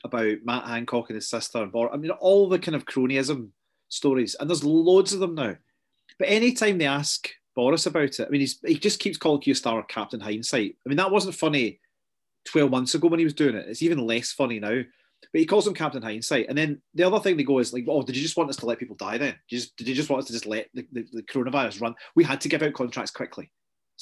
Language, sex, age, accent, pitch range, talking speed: English, male, 30-49, British, 120-160 Hz, 265 wpm